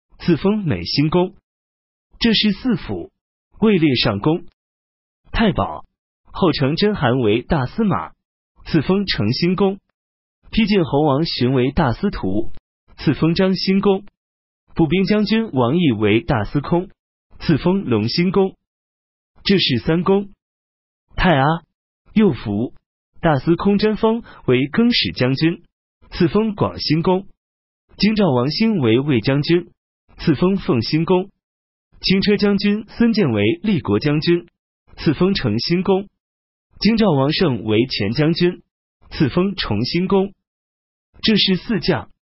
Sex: male